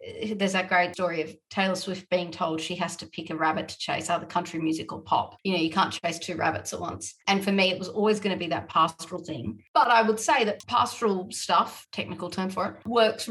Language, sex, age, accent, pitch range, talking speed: English, female, 30-49, Australian, 175-210 Hz, 250 wpm